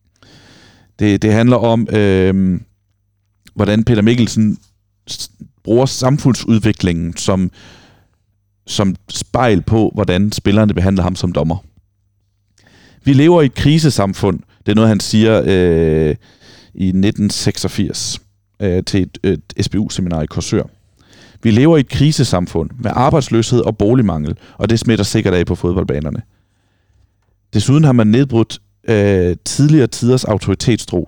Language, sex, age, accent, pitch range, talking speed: Danish, male, 40-59, native, 95-115 Hz, 120 wpm